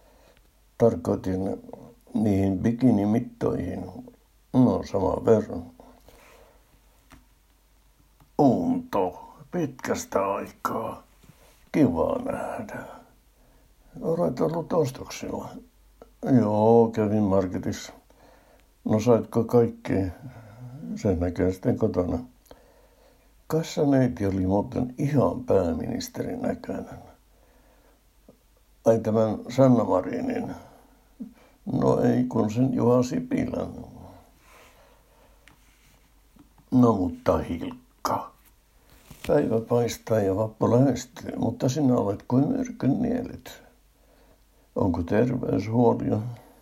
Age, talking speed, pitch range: 60-79, 70 wpm, 100-130 Hz